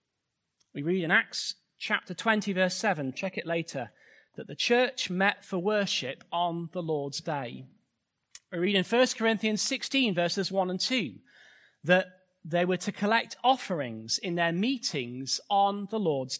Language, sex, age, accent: English, male, 30-49, British